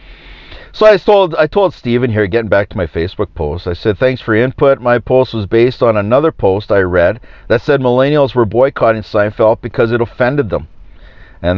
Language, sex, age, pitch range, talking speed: English, male, 40-59, 90-125 Hz, 200 wpm